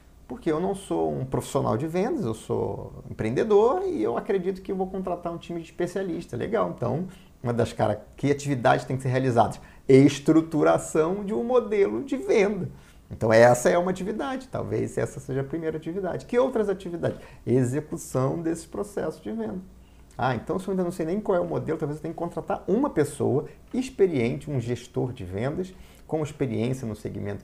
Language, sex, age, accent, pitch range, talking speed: Portuguese, male, 30-49, Brazilian, 115-180 Hz, 190 wpm